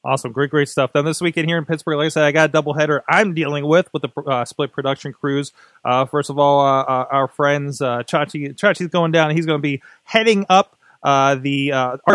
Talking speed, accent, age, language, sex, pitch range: 250 wpm, American, 20-39, English, male, 140-180 Hz